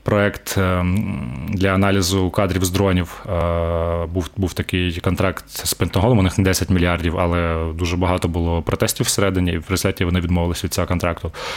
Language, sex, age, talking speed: Ukrainian, male, 20-39, 160 wpm